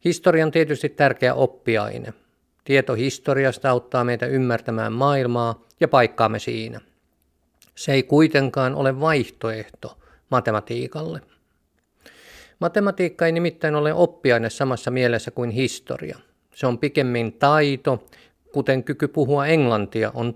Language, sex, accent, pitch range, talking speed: Finnish, male, native, 120-145 Hz, 110 wpm